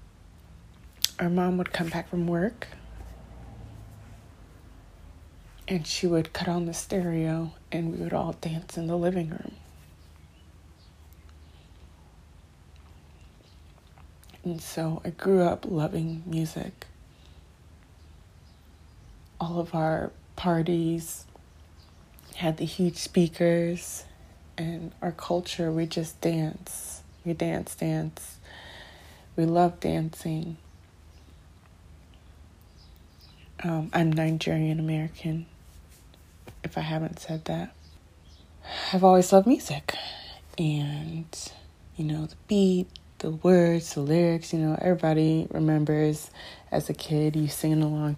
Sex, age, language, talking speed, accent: female, 20-39, English, 100 wpm, American